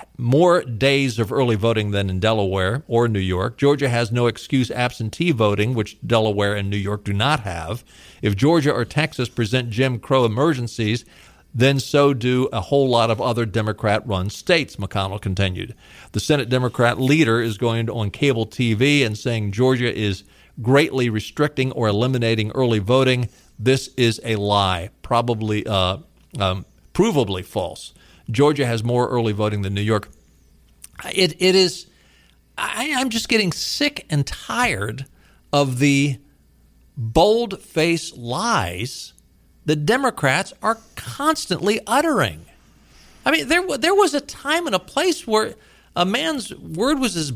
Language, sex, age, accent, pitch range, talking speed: English, male, 50-69, American, 110-155 Hz, 145 wpm